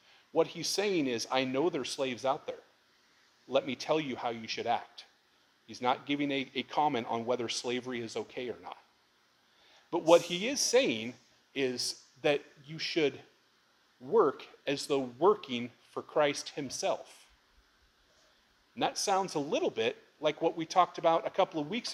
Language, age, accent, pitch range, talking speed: English, 30-49, American, 120-165 Hz, 170 wpm